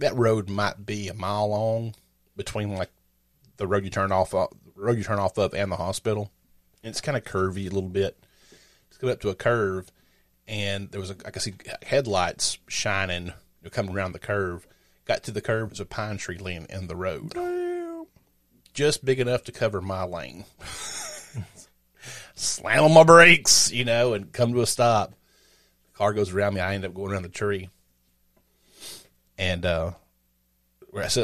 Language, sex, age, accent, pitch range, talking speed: English, male, 30-49, American, 90-115 Hz, 190 wpm